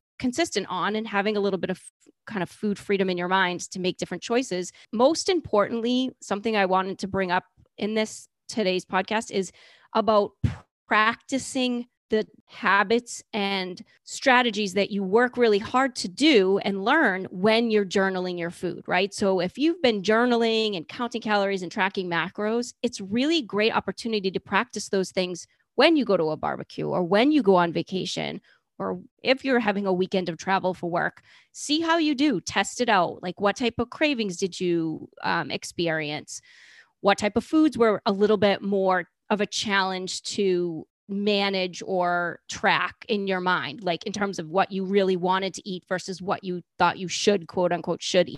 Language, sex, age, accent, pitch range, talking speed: English, female, 30-49, American, 185-225 Hz, 185 wpm